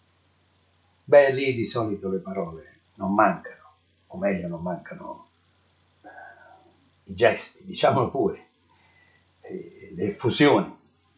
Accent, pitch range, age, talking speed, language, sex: native, 90-130 Hz, 60-79, 105 wpm, Italian, male